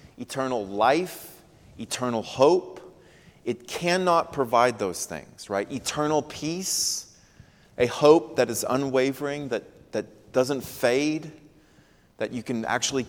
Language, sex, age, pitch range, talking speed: English, male, 30-49, 115-140 Hz, 115 wpm